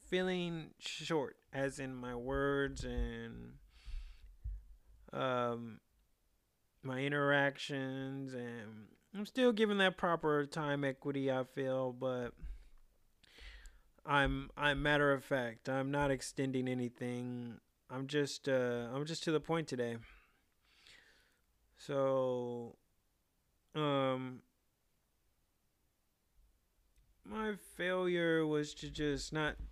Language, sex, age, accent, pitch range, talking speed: English, male, 30-49, American, 120-150 Hz, 95 wpm